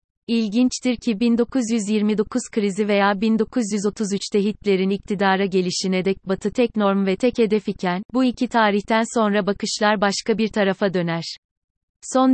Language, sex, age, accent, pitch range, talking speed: Turkish, female, 30-49, native, 195-220 Hz, 130 wpm